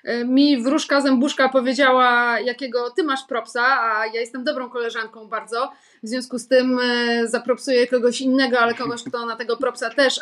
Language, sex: Polish, female